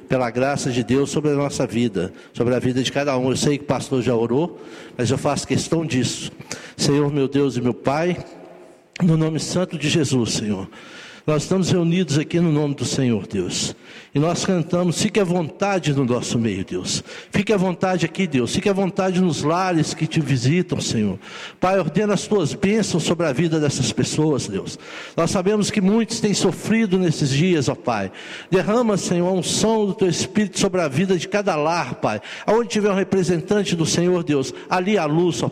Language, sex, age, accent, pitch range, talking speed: Portuguese, male, 60-79, Brazilian, 130-180 Hz, 200 wpm